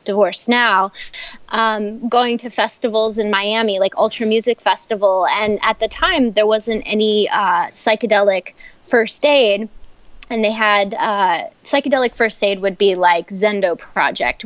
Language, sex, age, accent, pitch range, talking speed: English, female, 20-39, American, 195-230 Hz, 140 wpm